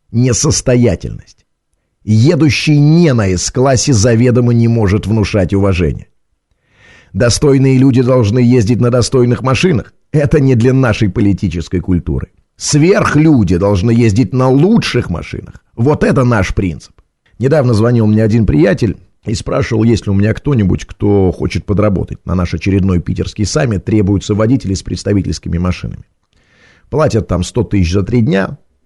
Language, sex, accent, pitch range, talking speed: Russian, male, native, 95-130 Hz, 135 wpm